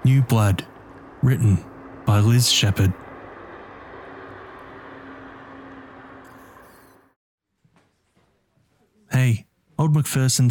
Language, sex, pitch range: English, male, 110-135 Hz